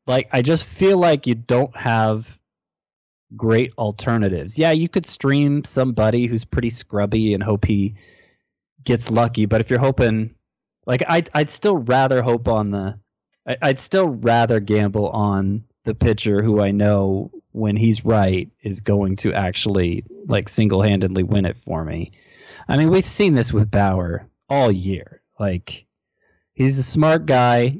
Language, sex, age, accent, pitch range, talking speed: English, male, 20-39, American, 105-135 Hz, 160 wpm